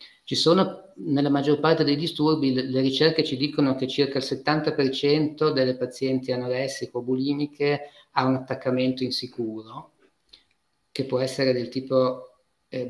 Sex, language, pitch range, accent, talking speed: male, Italian, 120-145 Hz, native, 130 wpm